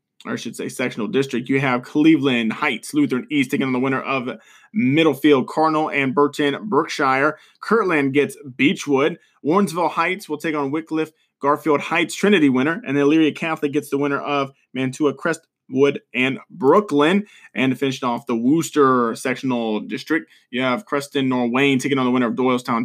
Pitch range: 130-155 Hz